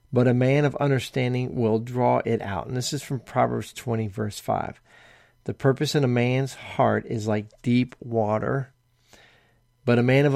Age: 40-59